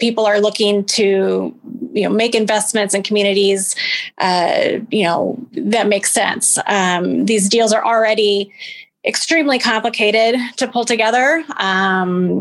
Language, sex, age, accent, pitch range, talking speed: English, female, 20-39, American, 200-230 Hz, 130 wpm